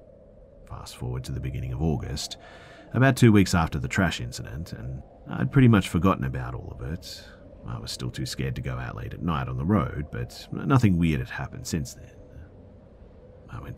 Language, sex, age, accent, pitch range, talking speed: English, male, 40-59, Australian, 70-105 Hz, 200 wpm